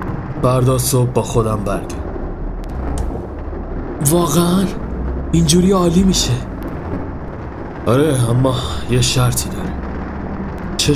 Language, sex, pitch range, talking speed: Persian, male, 90-130 Hz, 80 wpm